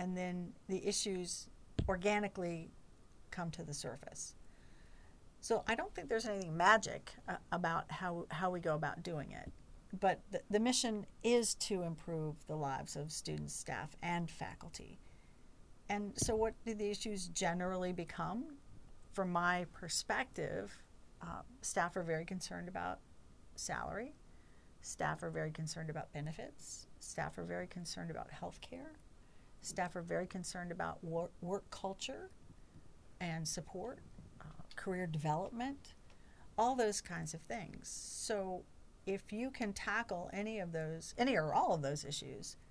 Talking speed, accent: 140 wpm, American